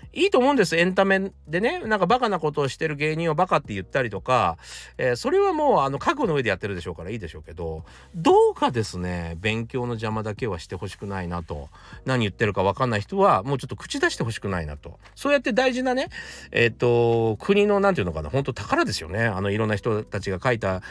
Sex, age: male, 40-59